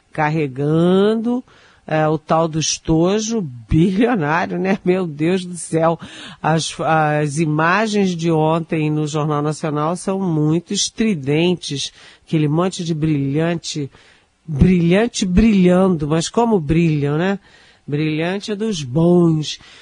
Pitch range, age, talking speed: 155-210 Hz, 50-69, 110 wpm